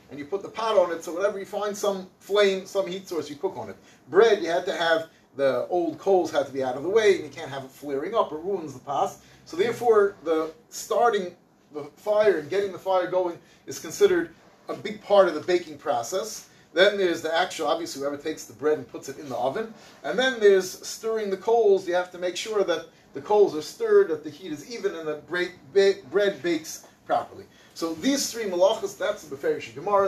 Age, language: 30-49, English